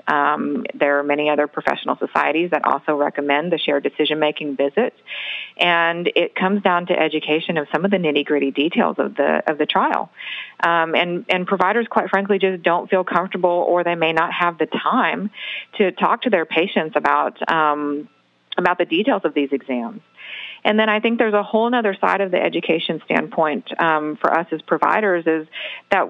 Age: 40-59